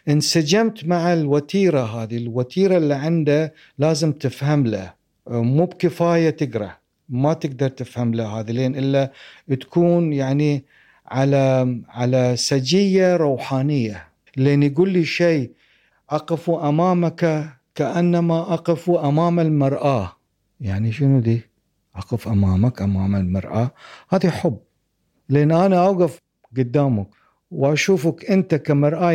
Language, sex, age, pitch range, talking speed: Arabic, male, 50-69, 125-170 Hz, 105 wpm